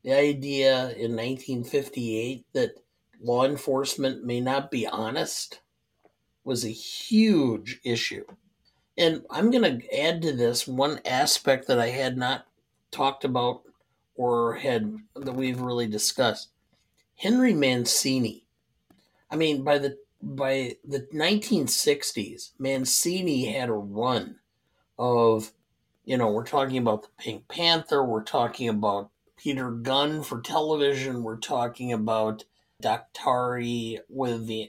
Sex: male